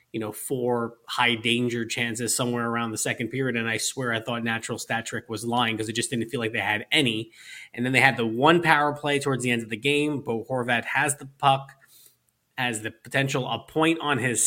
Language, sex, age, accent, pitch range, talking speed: English, male, 30-49, American, 115-130 Hz, 230 wpm